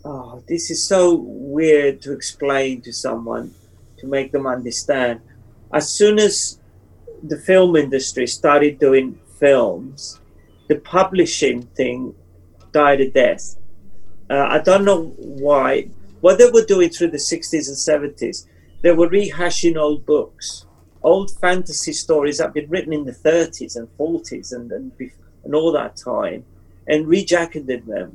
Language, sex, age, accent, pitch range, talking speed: English, male, 40-59, British, 125-170 Hz, 145 wpm